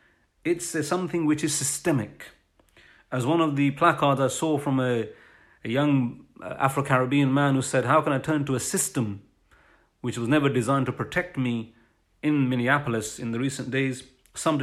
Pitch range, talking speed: 120-155 Hz, 170 wpm